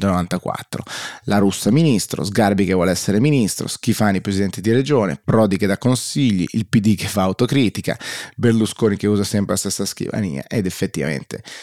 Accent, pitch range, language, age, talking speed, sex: native, 100-120 Hz, Italian, 30-49, 160 wpm, male